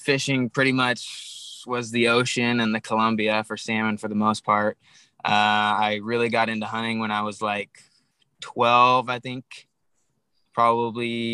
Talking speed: 155 wpm